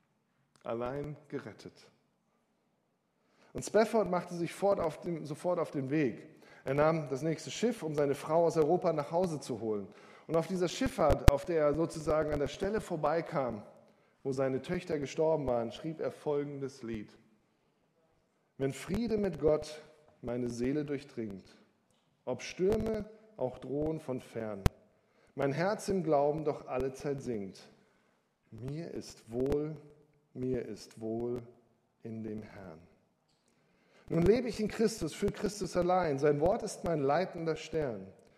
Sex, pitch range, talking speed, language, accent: male, 125-170 Hz, 140 wpm, German, German